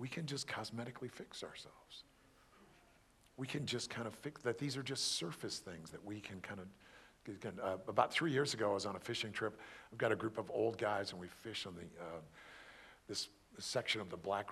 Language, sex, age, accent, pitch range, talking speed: English, male, 50-69, American, 95-120 Hz, 215 wpm